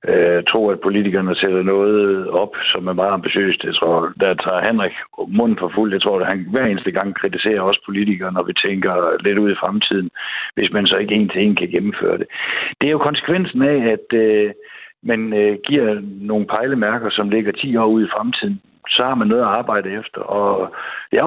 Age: 60-79